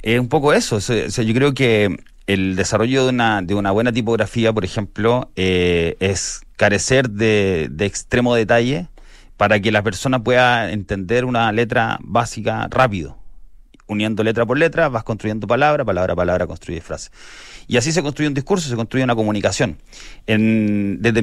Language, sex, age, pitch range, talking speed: Spanish, male, 30-49, 95-125 Hz, 160 wpm